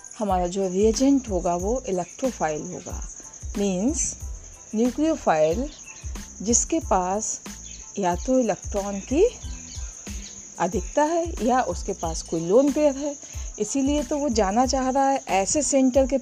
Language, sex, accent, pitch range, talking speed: English, female, Indian, 185-280 Hz, 120 wpm